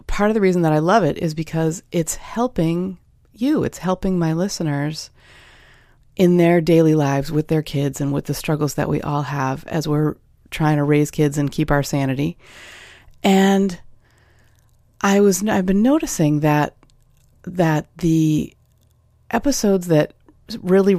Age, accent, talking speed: 30-49, American, 155 wpm